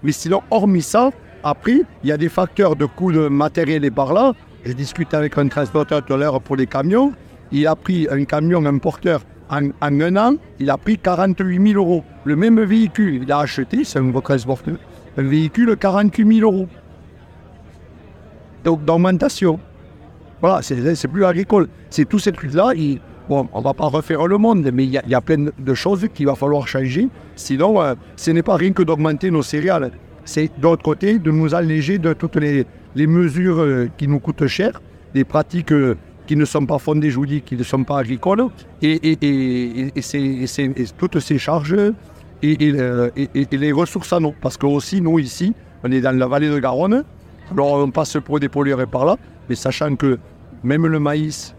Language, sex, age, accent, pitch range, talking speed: French, male, 60-79, French, 135-175 Hz, 205 wpm